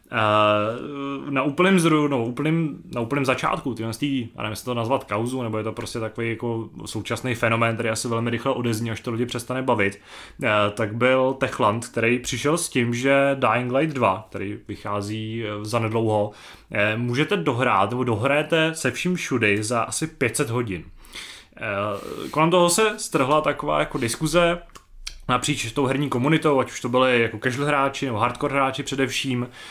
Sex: male